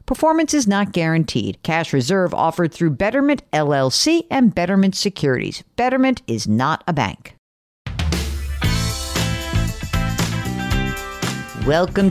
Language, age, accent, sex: English, 50-69, American, female